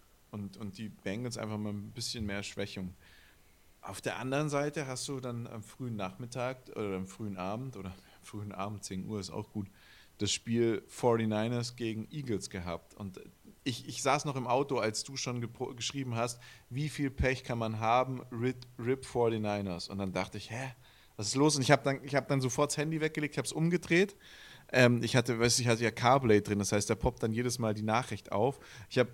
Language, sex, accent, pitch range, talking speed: German, male, German, 100-130 Hz, 215 wpm